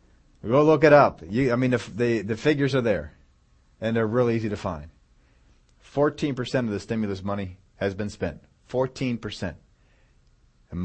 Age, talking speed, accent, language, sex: 30-49, 160 wpm, American, English, male